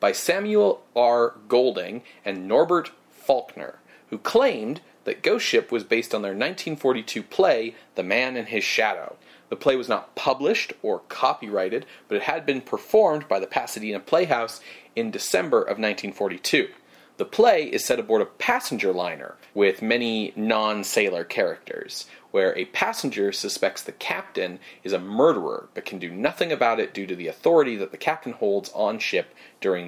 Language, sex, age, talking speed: English, male, 30-49, 165 wpm